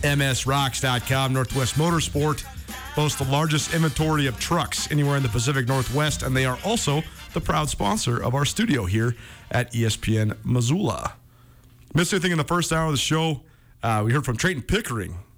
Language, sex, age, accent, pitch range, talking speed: English, male, 40-59, American, 115-150 Hz, 170 wpm